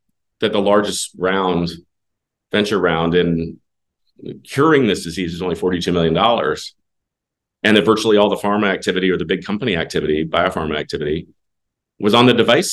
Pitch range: 90-115 Hz